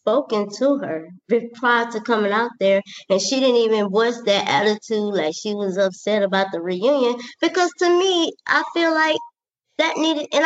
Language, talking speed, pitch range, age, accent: English, 180 wpm, 205-275 Hz, 20-39, American